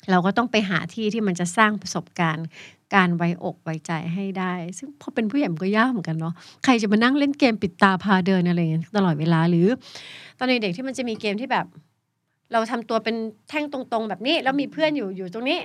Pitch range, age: 170-245 Hz, 60-79